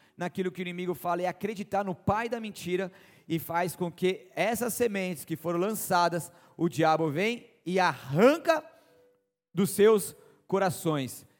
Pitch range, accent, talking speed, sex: 175-230 Hz, Brazilian, 145 wpm, male